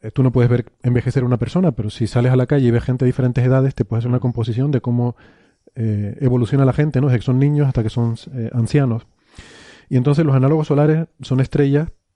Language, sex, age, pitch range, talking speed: Spanish, male, 30-49, 115-145 Hz, 235 wpm